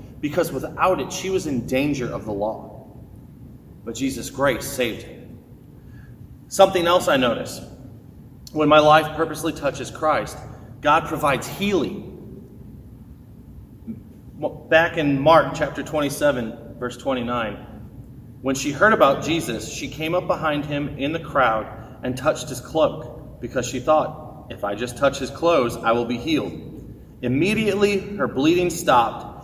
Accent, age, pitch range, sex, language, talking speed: American, 30-49, 125-160 Hz, male, English, 140 wpm